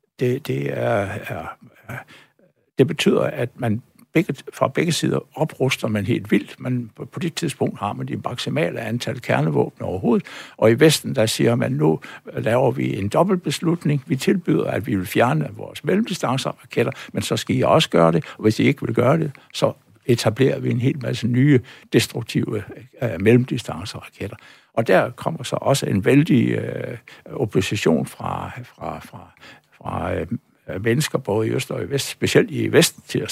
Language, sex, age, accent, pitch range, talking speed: Danish, male, 60-79, native, 105-145 Hz, 170 wpm